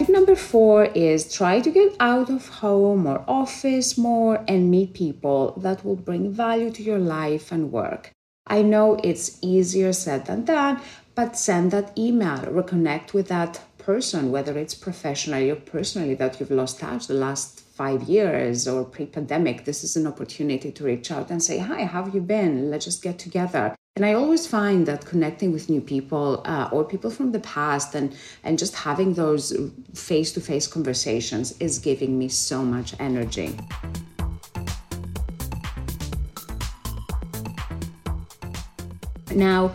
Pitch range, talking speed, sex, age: 135-205 Hz, 155 wpm, female, 30-49